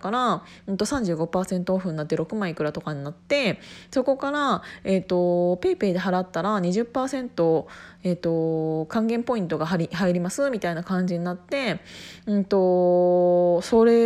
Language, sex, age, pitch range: Japanese, female, 20-39, 170-230 Hz